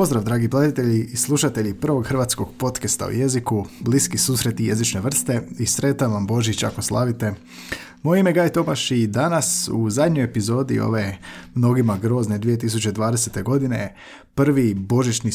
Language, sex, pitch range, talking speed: Croatian, male, 110-135 Hz, 145 wpm